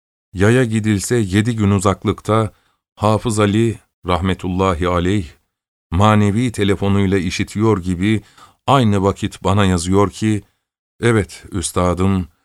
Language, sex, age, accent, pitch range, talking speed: Turkish, male, 50-69, native, 95-110 Hz, 95 wpm